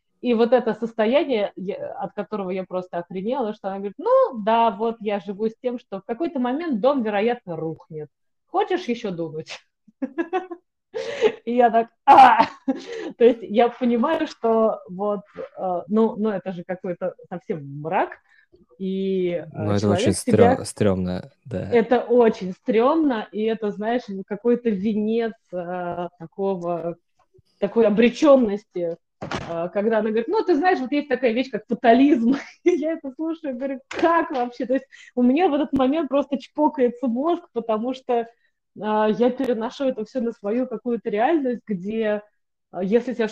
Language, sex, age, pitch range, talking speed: Russian, female, 20-39, 190-255 Hz, 145 wpm